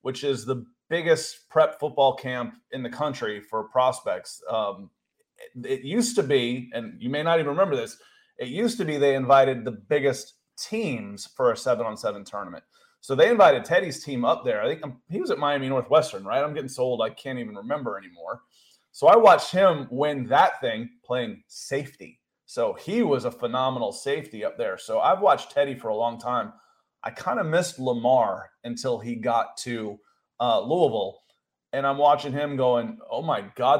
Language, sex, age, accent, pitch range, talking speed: English, male, 30-49, American, 125-200 Hz, 190 wpm